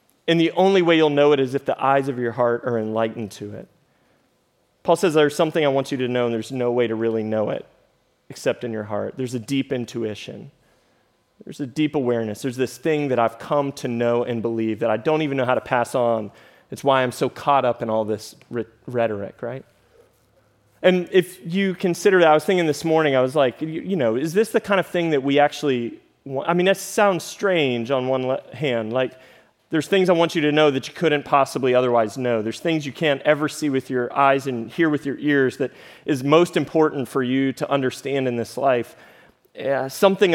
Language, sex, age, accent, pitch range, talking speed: English, male, 30-49, American, 120-160 Hz, 225 wpm